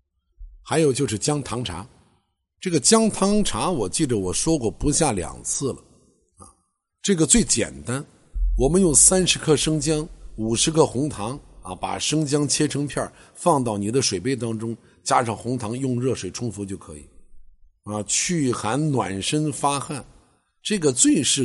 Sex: male